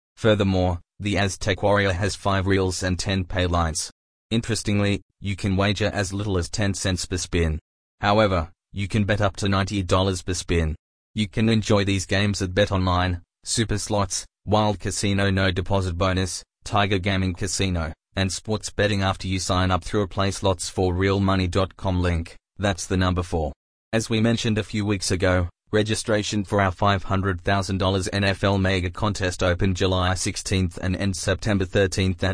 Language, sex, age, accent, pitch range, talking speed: English, male, 20-39, Australian, 90-100 Hz, 155 wpm